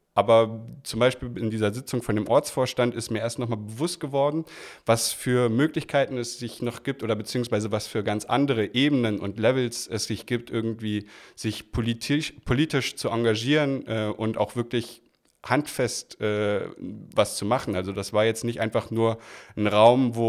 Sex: male